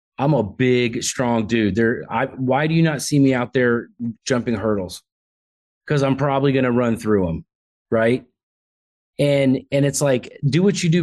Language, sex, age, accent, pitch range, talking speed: English, male, 30-49, American, 110-135 Hz, 180 wpm